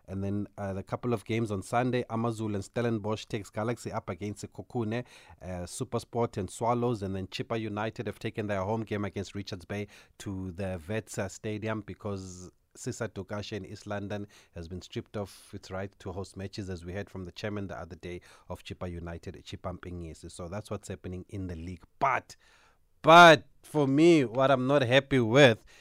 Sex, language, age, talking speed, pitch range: male, English, 30-49, 190 wpm, 100-140 Hz